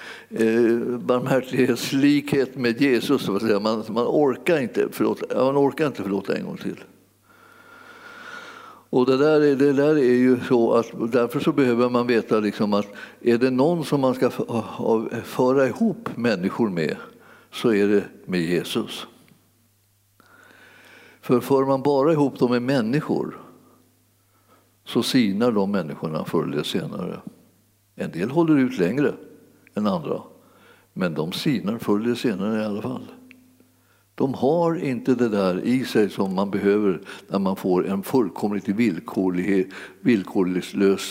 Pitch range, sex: 100-140 Hz, male